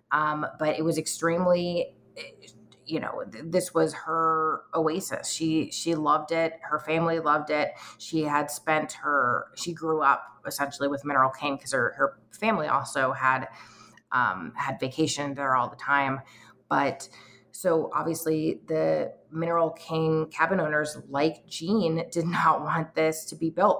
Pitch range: 140-160 Hz